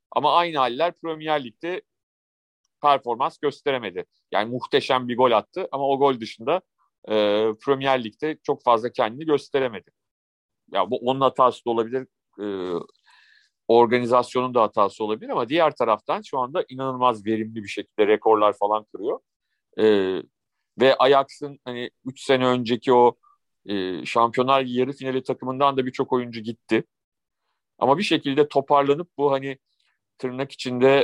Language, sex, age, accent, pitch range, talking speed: Turkish, male, 40-59, native, 115-140 Hz, 135 wpm